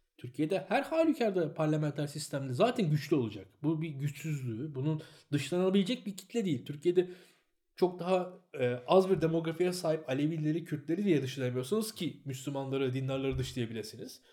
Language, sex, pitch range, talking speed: Turkish, male, 135-210 Hz, 135 wpm